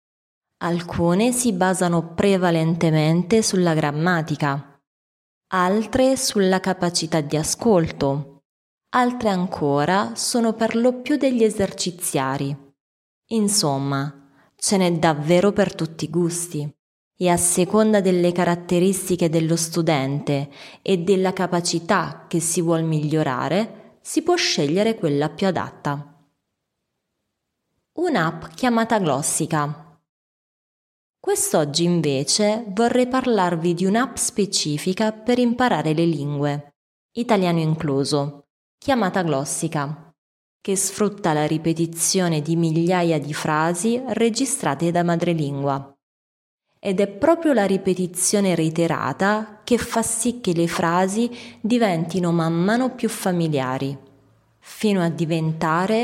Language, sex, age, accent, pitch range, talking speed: Italian, female, 20-39, native, 150-210 Hz, 105 wpm